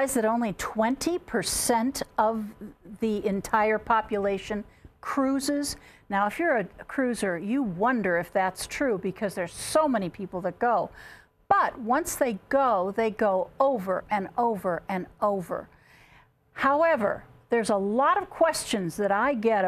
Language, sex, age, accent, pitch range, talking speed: English, female, 50-69, American, 200-270 Hz, 135 wpm